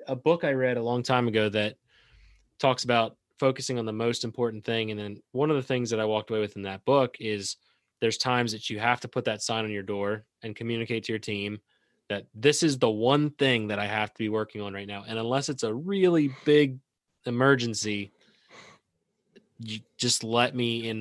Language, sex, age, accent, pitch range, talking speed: English, male, 20-39, American, 105-125 Hz, 215 wpm